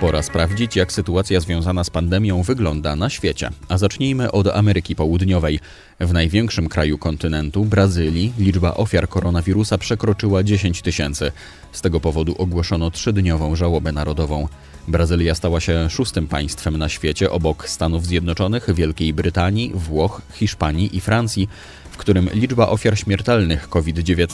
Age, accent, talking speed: 30-49, native, 135 wpm